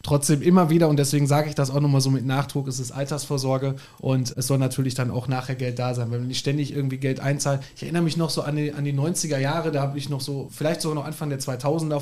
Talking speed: 275 wpm